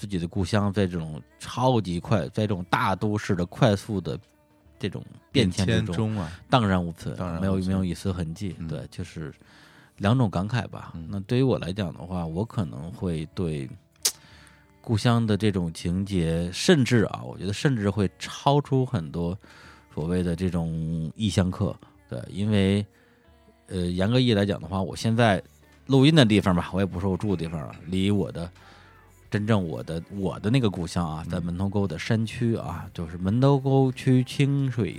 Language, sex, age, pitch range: Chinese, male, 20-39, 85-110 Hz